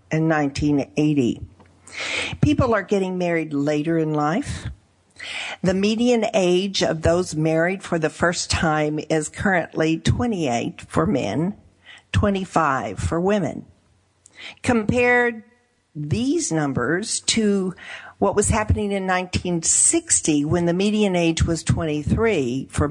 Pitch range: 135-200 Hz